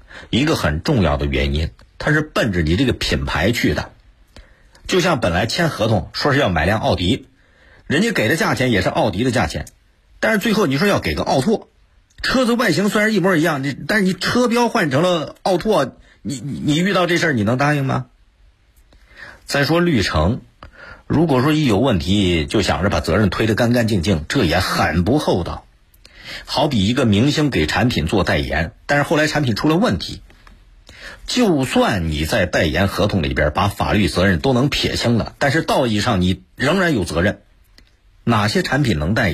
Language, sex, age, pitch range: Chinese, male, 50-69, 90-150 Hz